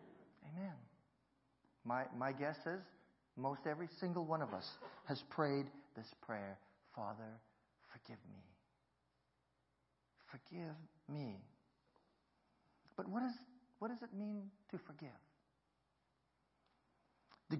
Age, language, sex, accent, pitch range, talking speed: 50-69, English, male, American, 115-190 Hz, 95 wpm